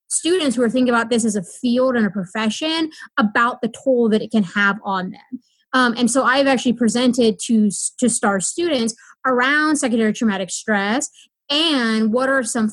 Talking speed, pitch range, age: 185 wpm, 220-260 Hz, 20-39